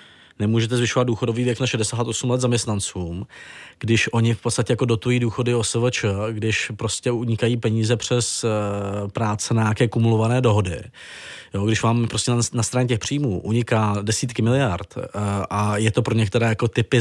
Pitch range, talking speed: 110-120 Hz, 160 wpm